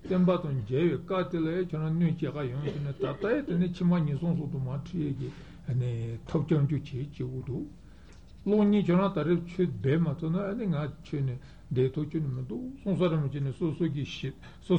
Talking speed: 140 wpm